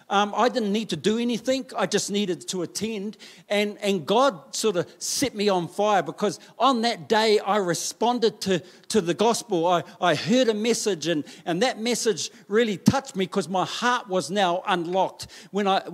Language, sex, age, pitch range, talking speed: English, male, 50-69, 185-225 Hz, 195 wpm